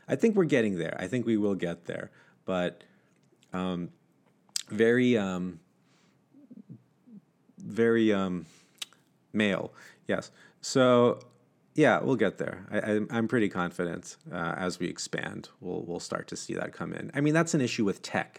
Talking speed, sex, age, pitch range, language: 155 wpm, male, 30-49, 90-115 Hz, English